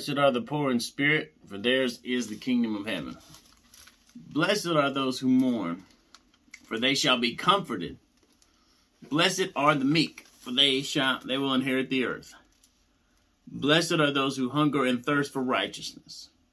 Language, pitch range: English, 120-155 Hz